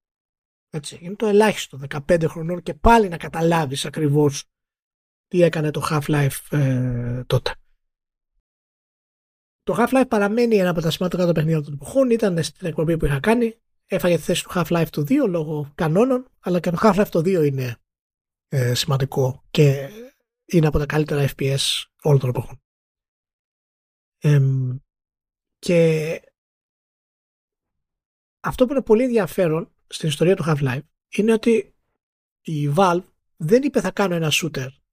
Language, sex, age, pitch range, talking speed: Greek, male, 30-49, 140-205 Hz, 130 wpm